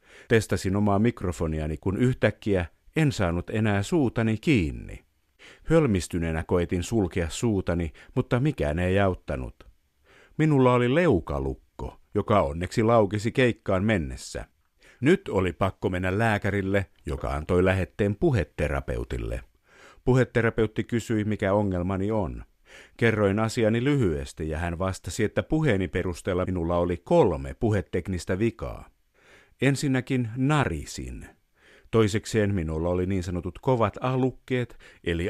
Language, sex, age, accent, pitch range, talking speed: Finnish, male, 50-69, native, 85-115 Hz, 110 wpm